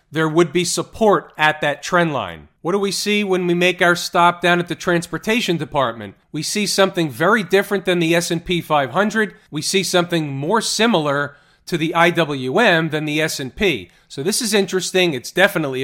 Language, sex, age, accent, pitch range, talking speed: English, male, 40-59, American, 155-200 Hz, 180 wpm